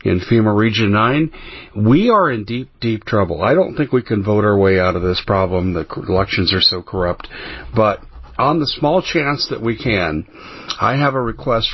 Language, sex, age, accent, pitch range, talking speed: English, male, 50-69, American, 100-125 Hz, 200 wpm